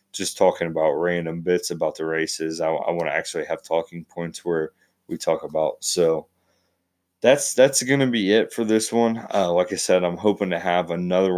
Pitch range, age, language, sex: 85-100 Hz, 20-39, English, male